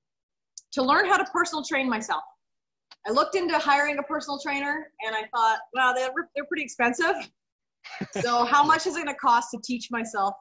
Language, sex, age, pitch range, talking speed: English, female, 30-49, 200-260 Hz, 185 wpm